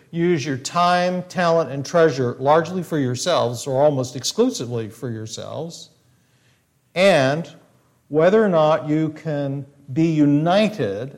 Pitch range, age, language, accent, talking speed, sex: 130-180 Hz, 50-69, English, American, 120 wpm, male